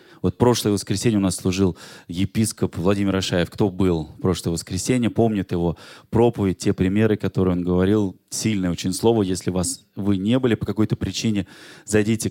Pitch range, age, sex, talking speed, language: 95-120 Hz, 20-39, male, 165 wpm, Russian